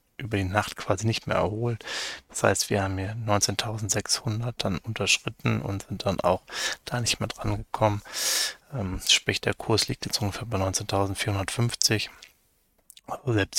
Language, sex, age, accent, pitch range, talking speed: German, male, 20-39, German, 100-115 Hz, 145 wpm